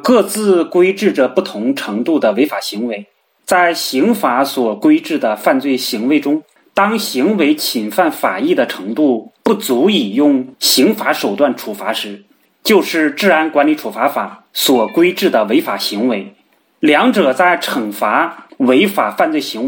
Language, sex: Chinese, male